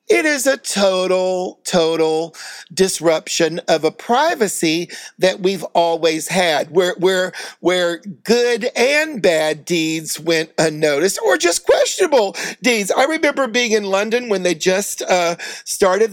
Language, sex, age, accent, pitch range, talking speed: English, male, 50-69, American, 175-240 Hz, 135 wpm